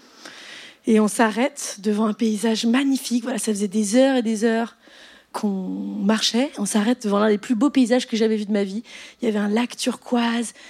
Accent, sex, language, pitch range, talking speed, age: French, female, French, 220-300 Hz, 210 wpm, 30-49